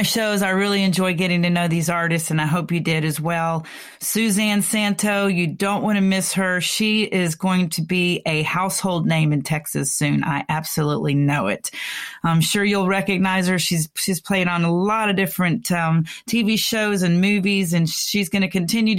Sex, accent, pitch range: female, American, 165-195 Hz